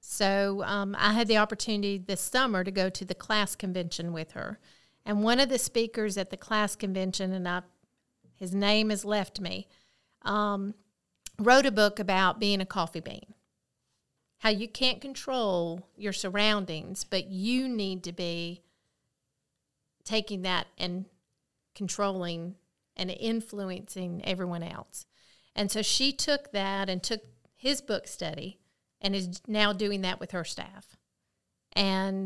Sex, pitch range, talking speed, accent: female, 180-210 Hz, 145 wpm, American